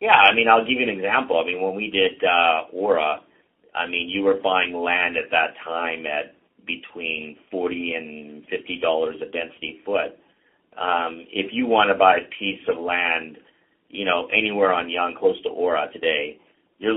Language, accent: English, American